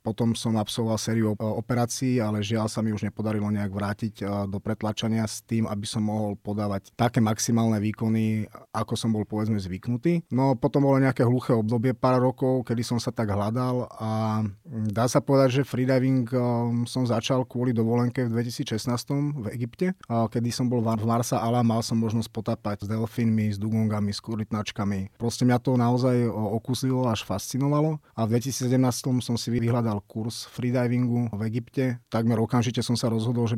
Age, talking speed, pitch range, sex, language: 30-49, 170 wpm, 110-125 Hz, male, Slovak